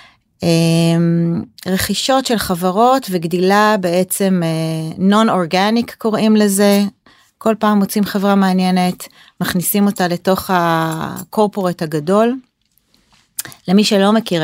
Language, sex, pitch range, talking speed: Hebrew, female, 170-205 Hz, 90 wpm